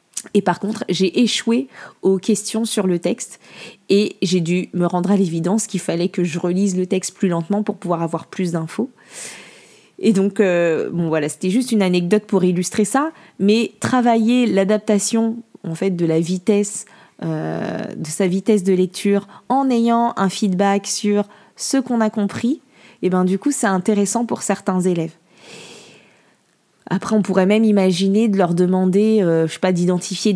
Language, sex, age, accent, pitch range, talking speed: French, female, 20-39, French, 180-220 Hz, 150 wpm